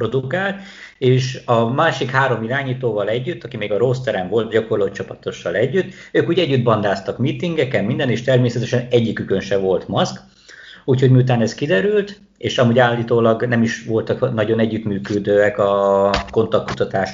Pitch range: 105-130 Hz